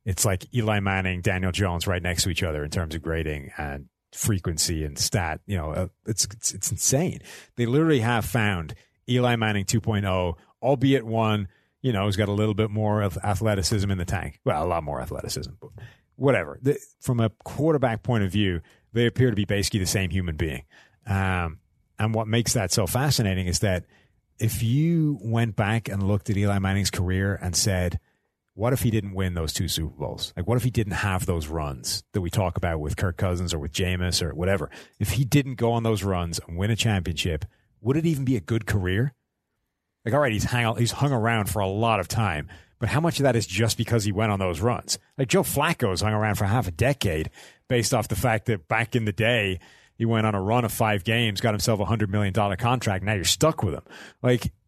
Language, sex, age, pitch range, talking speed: English, male, 30-49, 95-120 Hz, 220 wpm